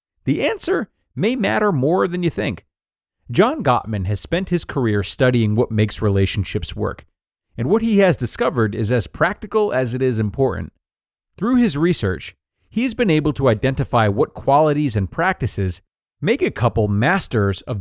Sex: male